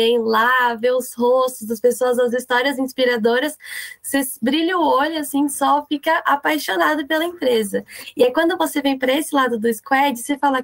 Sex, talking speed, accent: female, 185 wpm, Brazilian